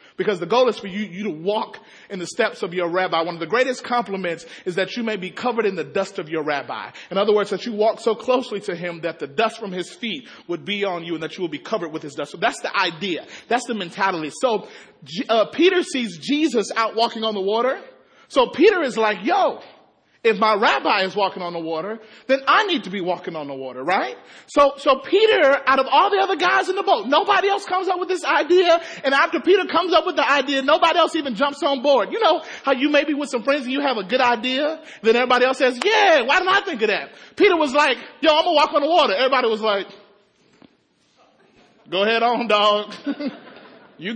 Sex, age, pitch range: male, 30-49, 195-285 Hz